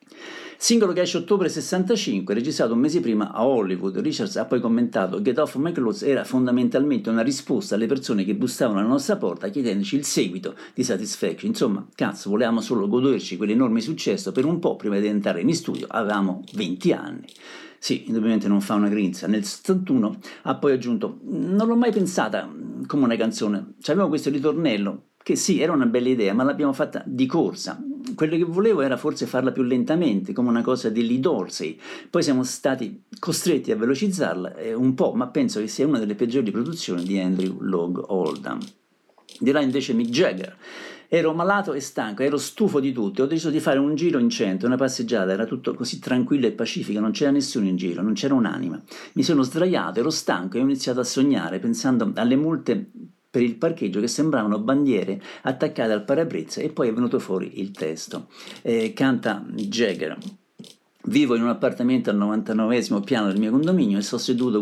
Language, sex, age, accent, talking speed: Italian, male, 50-69, native, 185 wpm